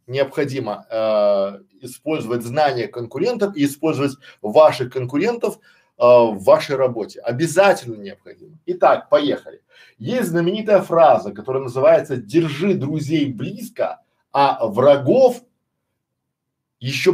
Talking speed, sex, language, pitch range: 100 wpm, male, Russian, 135-185 Hz